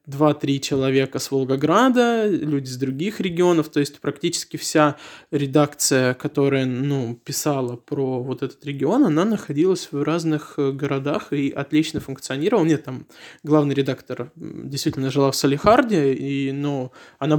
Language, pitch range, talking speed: Russian, 140-155 Hz, 140 wpm